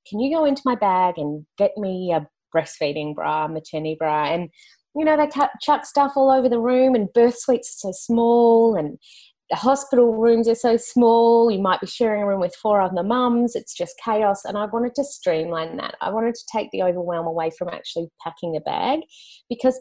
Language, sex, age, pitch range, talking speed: English, female, 30-49, 155-235 Hz, 215 wpm